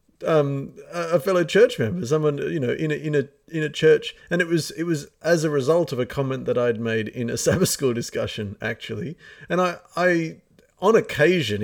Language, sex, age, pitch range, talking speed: English, male, 40-59, 115-160 Hz, 200 wpm